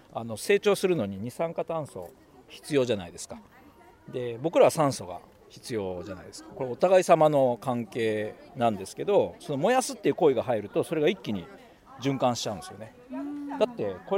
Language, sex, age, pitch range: Japanese, male, 40-59, 125-200 Hz